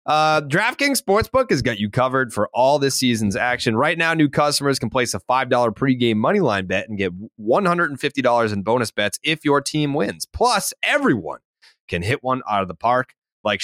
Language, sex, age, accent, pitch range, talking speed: English, male, 30-49, American, 95-145 Hz, 190 wpm